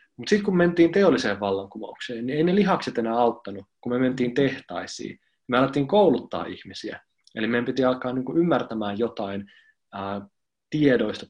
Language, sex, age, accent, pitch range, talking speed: Finnish, male, 20-39, native, 105-150 Hz, 160 wpm